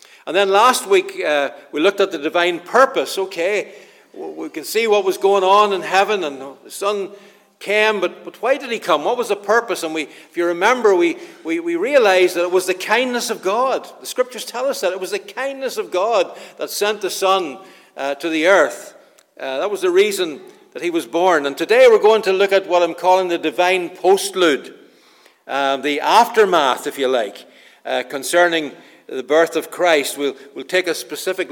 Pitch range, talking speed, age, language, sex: 160-240 Hz, 205 wpm, 60-79, English, male